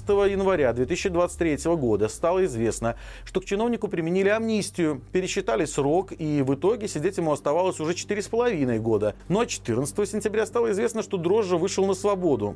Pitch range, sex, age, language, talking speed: 130-190 Hz, male, 40-59, Russian, 165 wpm